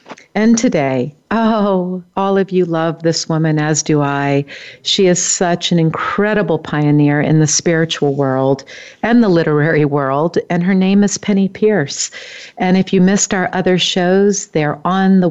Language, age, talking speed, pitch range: English, 50-69, 165 wpm, 155-200 Hz